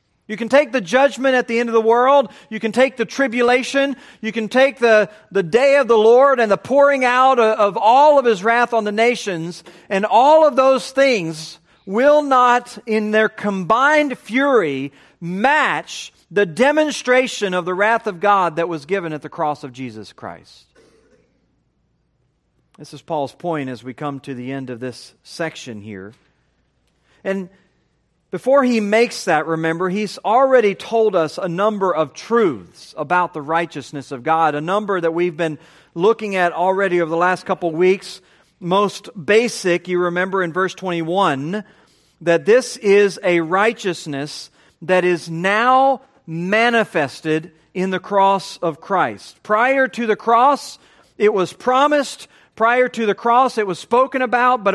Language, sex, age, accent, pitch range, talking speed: English, male, 40-59, American, 175-240 Hz, 165 wpm